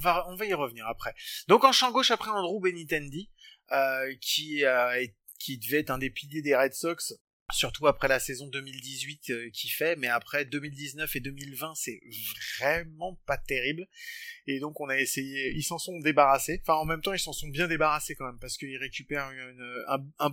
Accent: French